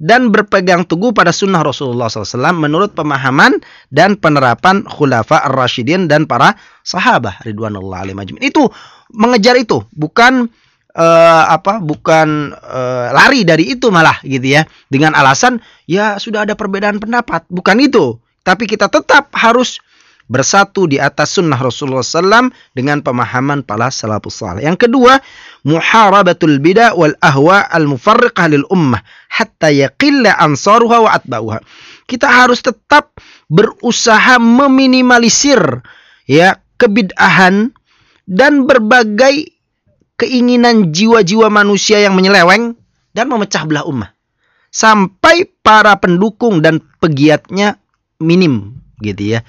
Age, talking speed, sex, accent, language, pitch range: 30-49, 115 wpm, male, native, Indonesian, 145-235 Hz